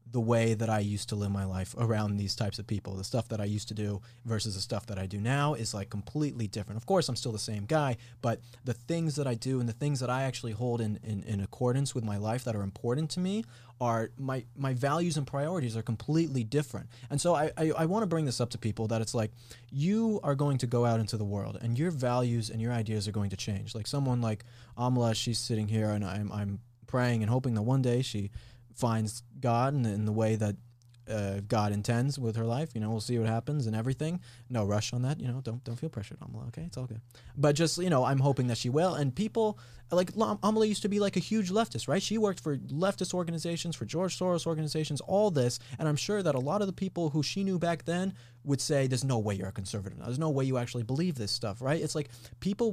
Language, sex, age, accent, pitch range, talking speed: English, male, 20-39, American, 110-150 Hz, 255 wpm